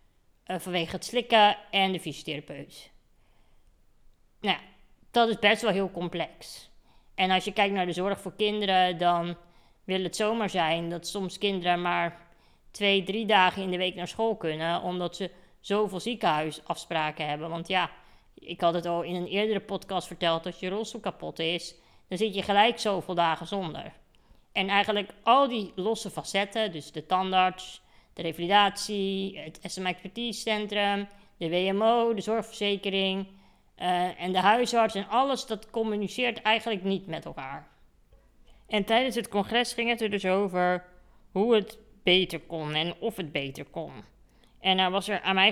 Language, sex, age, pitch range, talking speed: Dutch, female, 20-39, 170-205 Hz, 165 wpm